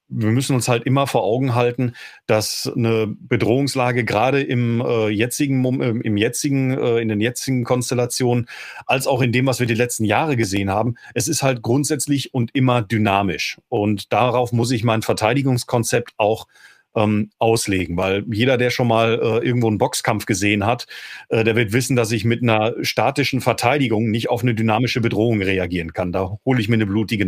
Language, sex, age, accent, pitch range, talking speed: German, male, 40-59, German, 110-130 Hz, 185 wpm